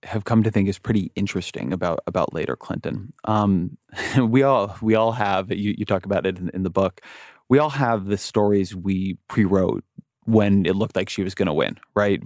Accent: American